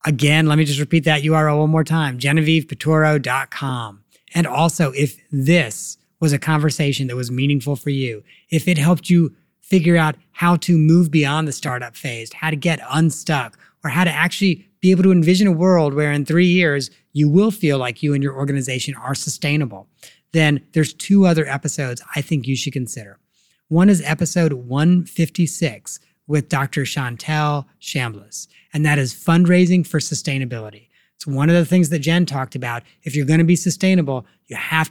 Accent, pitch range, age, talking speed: American, 140-170 Hz, 30-49, 180 wpm